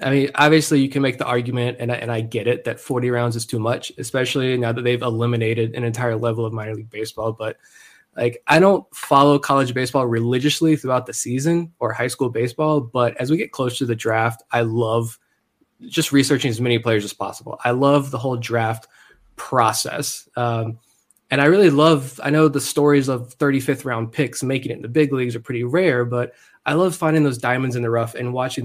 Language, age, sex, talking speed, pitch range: English, 20-39, male, 215 wpm, 115-140 Hz